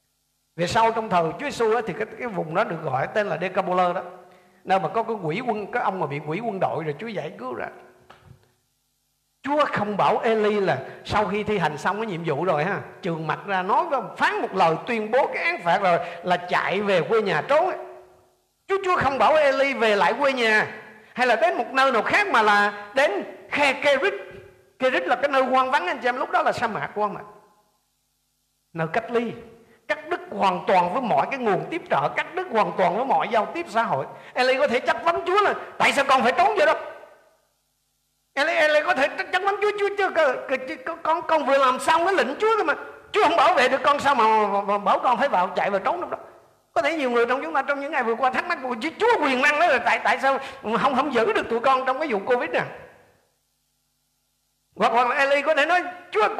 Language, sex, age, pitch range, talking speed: Vietnamese, male, 50-69, 205-305 Hz, 230 wpm